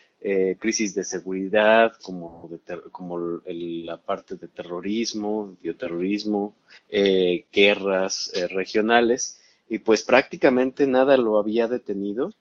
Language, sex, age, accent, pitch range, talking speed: Spanish, male, 30-49, Mexican, 95-115 Hz, 120 wpm